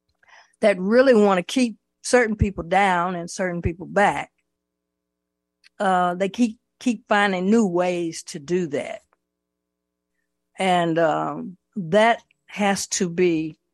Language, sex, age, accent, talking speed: English, female, 50-69, American, 120 wpm